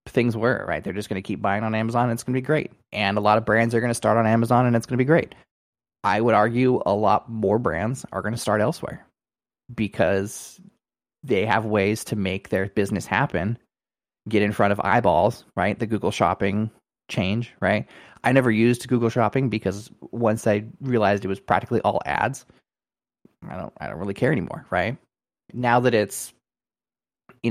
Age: 20-39